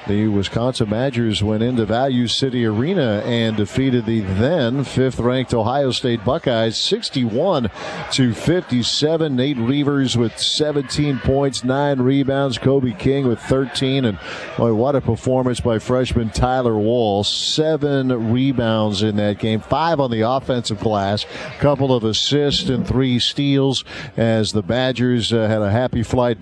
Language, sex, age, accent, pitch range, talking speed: English, male, 50-69, American, 110-130 Hz, 145 wpm